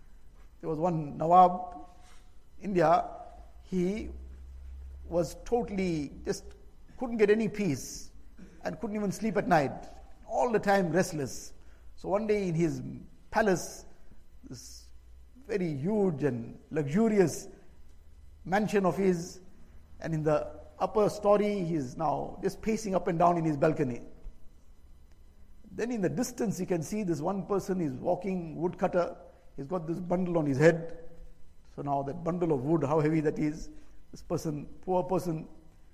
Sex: male